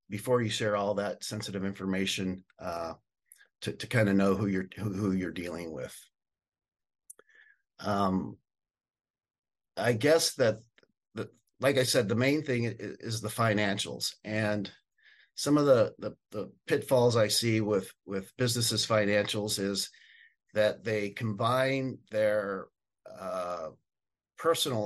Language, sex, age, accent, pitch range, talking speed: English, male, 50-69, American, 100-125 Hz, 130 wpm